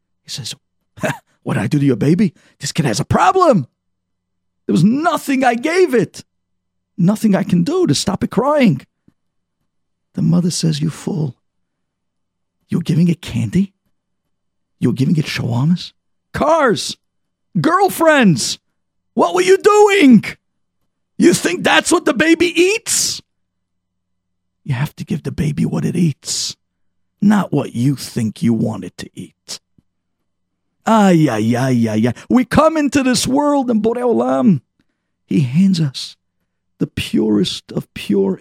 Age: 50-69